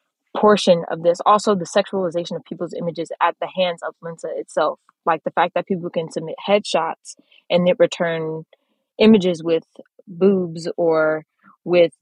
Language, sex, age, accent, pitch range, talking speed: English, female, 20-39, American, 160-195 Hz, 155 wpm